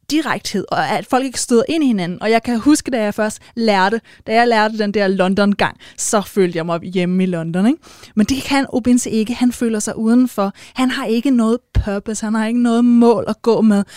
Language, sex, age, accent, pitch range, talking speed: Danish, female, 20-39, native, 195-230 Hz, 220 wpm